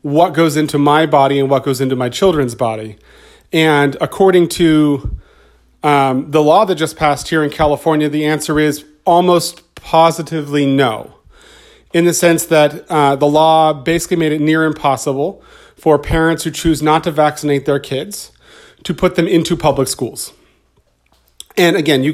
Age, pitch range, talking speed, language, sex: 40-59, 140-170 Hz, 165 wpm, English, male